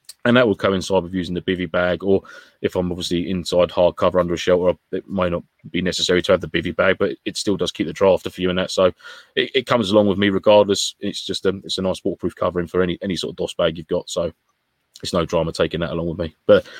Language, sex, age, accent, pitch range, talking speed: English, male, 20-39, British, 90-105 Hz, 270 wpm